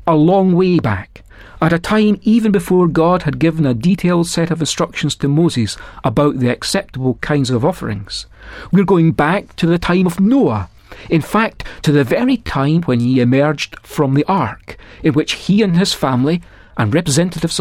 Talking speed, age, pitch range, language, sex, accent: 180 wpm, 40-59, 125-185 Hz, English, male, British